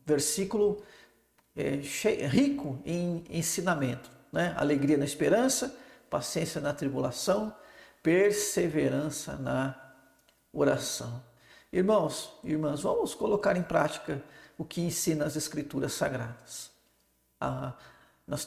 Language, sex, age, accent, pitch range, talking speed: Portuguese, male, 50-69, Brazilian, 145-190 Hz, 90 wpm